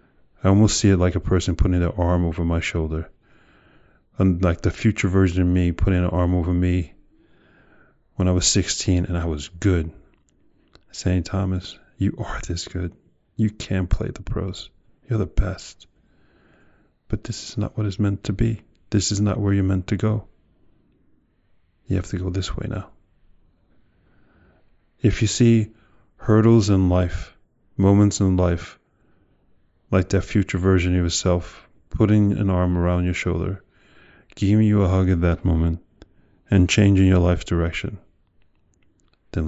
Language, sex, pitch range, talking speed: English, male, 85-100 Hz, 160 wpm